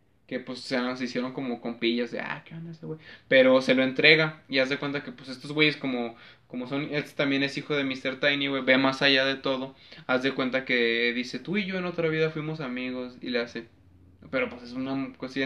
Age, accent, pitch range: 20-39, Mexican, 130-155 Hz